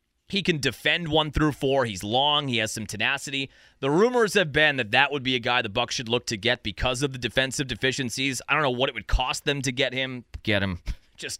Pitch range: 115-170 Hz